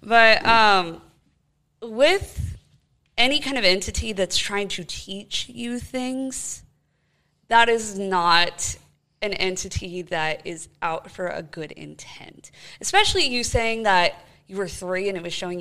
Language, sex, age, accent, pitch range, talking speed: English, female, 20-39, American, 170-230 Hz, 140 wpm